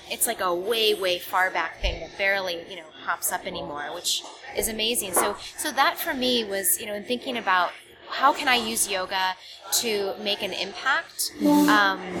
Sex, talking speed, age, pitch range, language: female, 190 wpm, 20-39, 185-235 Hz, English